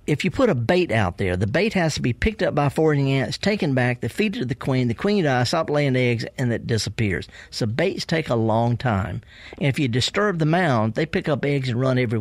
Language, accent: English, American